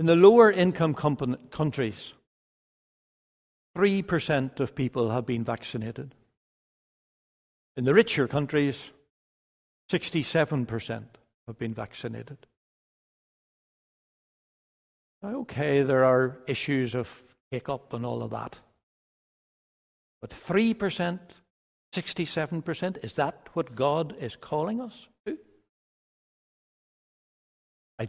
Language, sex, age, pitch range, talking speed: English, male, 60-79, 125-185 Hz, 85 wpm